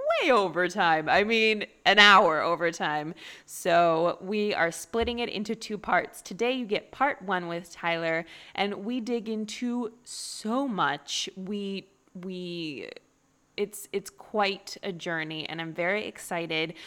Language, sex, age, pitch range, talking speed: English, female, 20-39, 175-230 Hz, 140 wpm